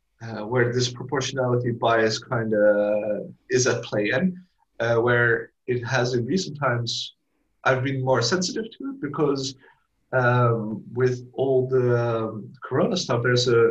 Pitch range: 110-130 Hz